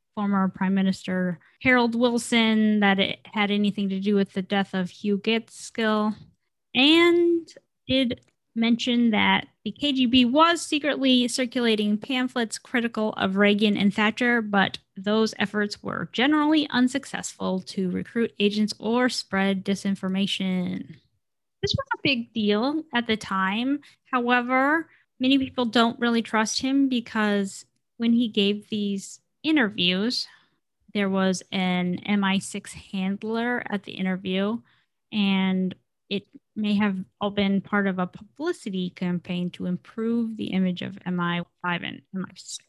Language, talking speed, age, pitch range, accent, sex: English, 130 wpm, 10-29, 195-245 Hz, American, female